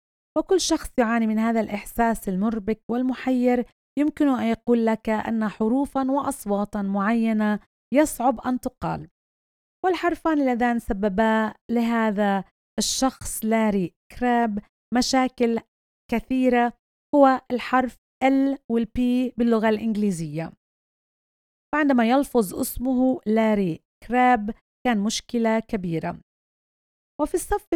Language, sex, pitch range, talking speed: Arabic, female, 220-255 Hz, 95 wpm